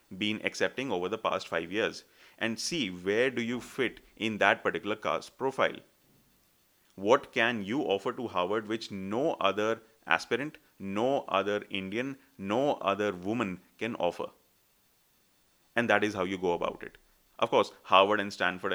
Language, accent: English, Indian